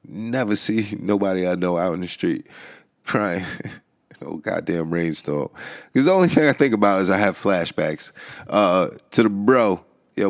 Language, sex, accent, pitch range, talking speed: English, male, American, 85-110 Hz, 170 wpm